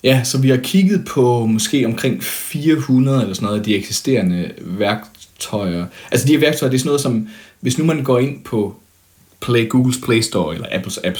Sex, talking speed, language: male, 205 wpm, Danish